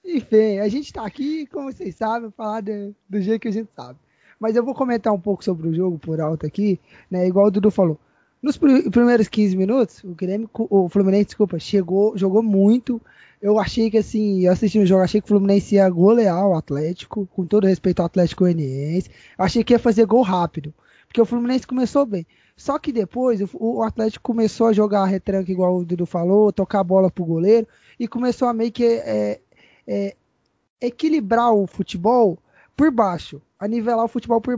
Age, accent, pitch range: 20-39, Brazilian, 195-240 Hz